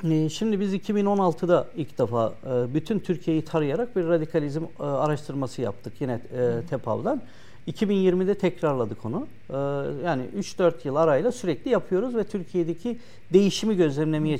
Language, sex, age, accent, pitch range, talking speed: Turkish, male, 60-79, native, 130-170 Hz, 115 wpm